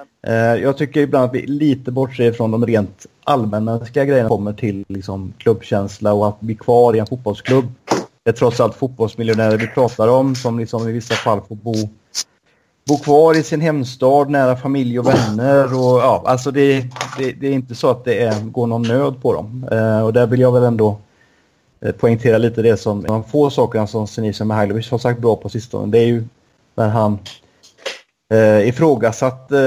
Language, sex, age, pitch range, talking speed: Swedish, male, 30-49, 110-130 Hz, 185 wpm